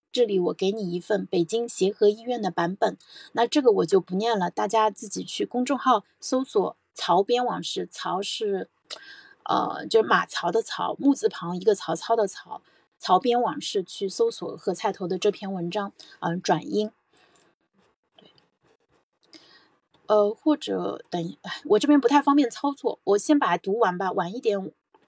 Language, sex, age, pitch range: Chinese, female, 30-49, 200-270 Hz